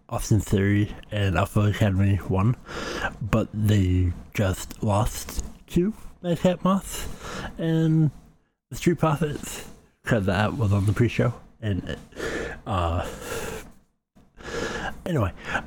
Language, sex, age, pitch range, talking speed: English, male, 60-79, 95-115 Hz, 100 wpm